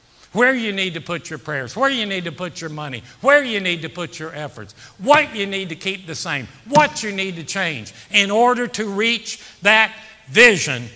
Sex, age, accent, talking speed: male, 60-79, American, 215 wpm